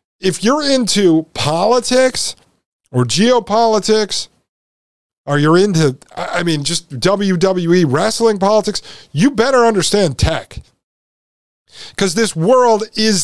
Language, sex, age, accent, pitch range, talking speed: English, male, 50-69, American, 155-200 Hz, 105 wpm